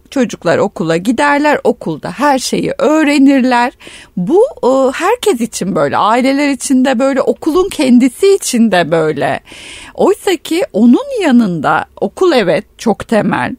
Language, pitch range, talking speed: Turkish, 215-290 Hz, 125 wpm